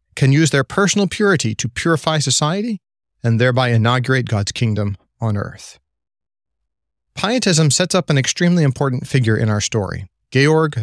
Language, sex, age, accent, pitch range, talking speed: English, male, 40-59, American, 115-150 Hz, 145 wpm